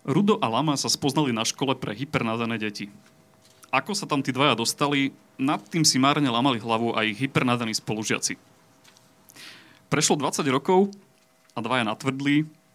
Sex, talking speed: male, 145 wpm